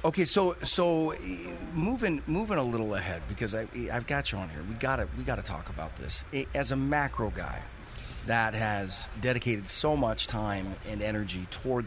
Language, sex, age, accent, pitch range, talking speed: English, male, 40-59, American, 100-140 Hz, 180 wpm